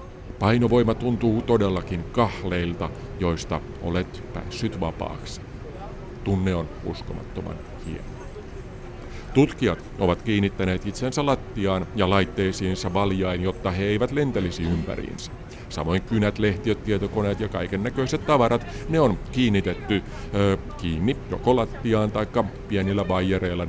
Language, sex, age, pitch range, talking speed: Finnish, male, 50-69, 90-120 Hz, 110 wpm